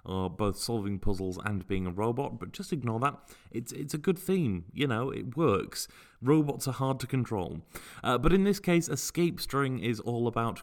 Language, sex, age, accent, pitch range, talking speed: English, male, 30-49, British, 110-155 Hz, 205 wpm